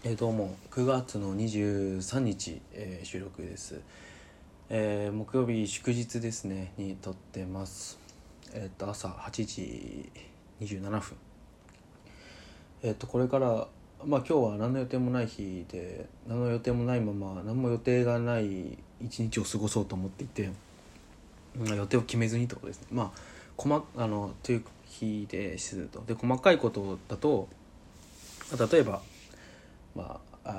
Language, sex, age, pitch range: Japanese, male, 20-39, 95-120 Hz